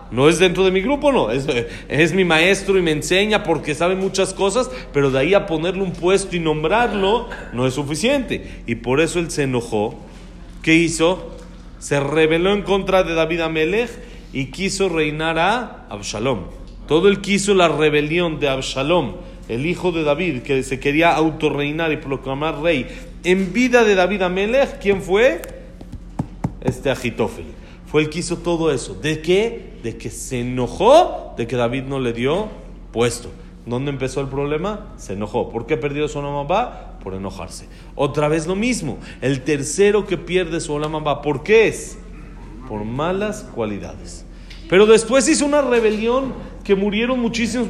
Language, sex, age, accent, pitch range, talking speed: Spanish, male, 40-59, Mexican, 140-200 Hz, 165 wpm